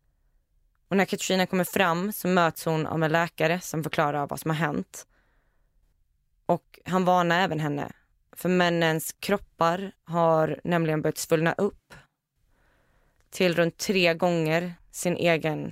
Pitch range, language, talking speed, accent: 155-180 Hz, Swedish, 135 wpm, native